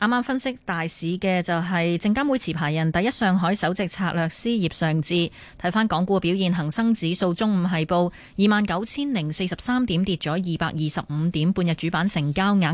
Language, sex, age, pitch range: Chinese, female, 20-39, 165-210 Hz